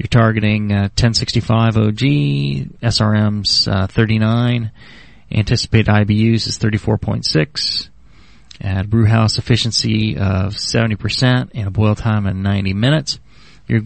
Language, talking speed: English, 115 wpm